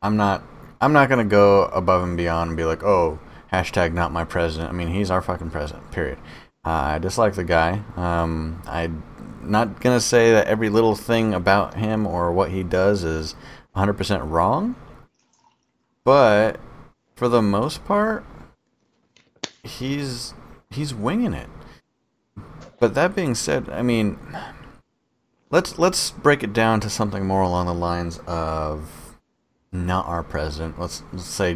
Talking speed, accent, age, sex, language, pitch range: 155 wpm, American, 30-49, male, English, 80-105 Hz